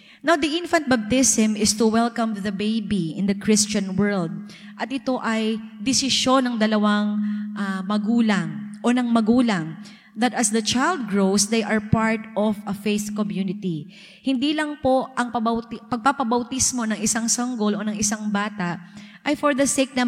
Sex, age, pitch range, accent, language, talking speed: female, 20-39, 205-245 Hz, native, Filipino, 160 wpm